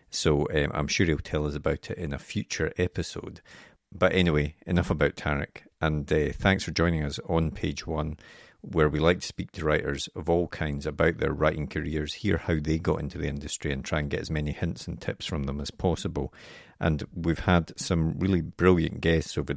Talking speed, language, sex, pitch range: 210 wpm, English, male, 75-85 Hz